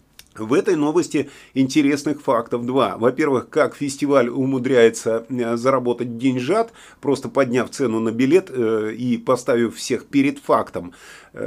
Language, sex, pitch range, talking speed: Russian, male, 120-145 Hz, 115 wpm